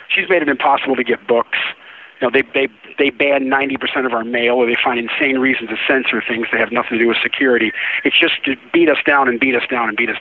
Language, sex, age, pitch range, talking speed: English, male, 40-59, 115-140 Hz, 265 wpm